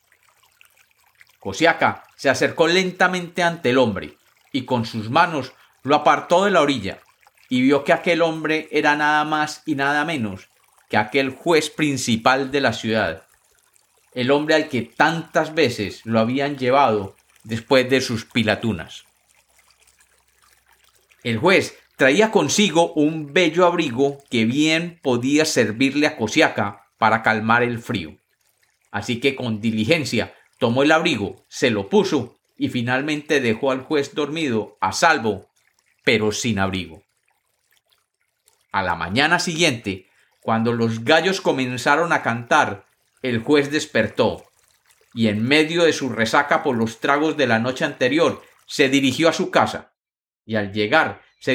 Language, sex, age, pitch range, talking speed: Spanish, male, 40-59, 115-155 Hz, 140 wpm